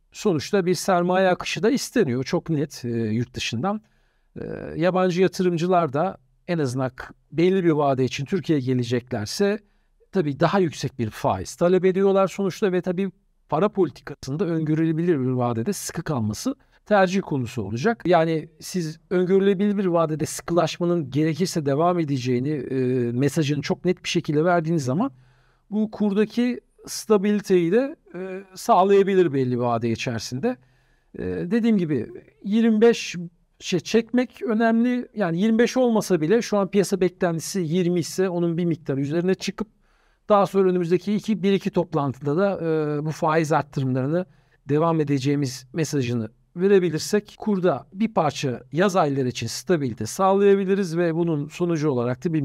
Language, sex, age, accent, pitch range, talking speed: Turkish, male, 50-69, native, 140-195 Hz, 135 wpm